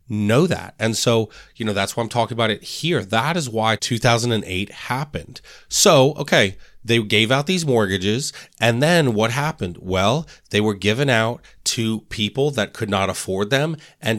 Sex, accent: male, American